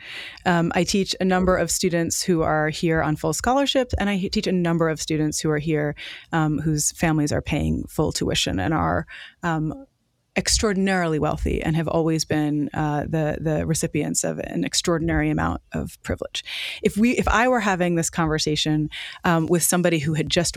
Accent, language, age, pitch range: American, English, 30-49, 160-205 Hz